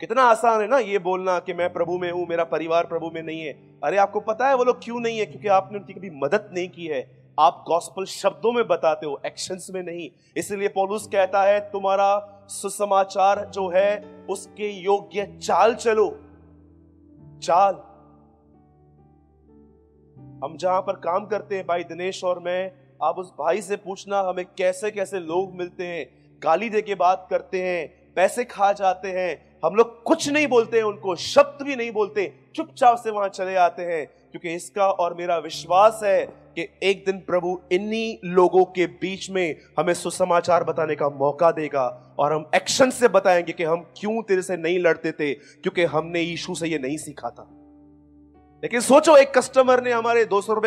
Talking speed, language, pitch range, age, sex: 180 wpm, Hindi, 160-205 Hz, 30-49, male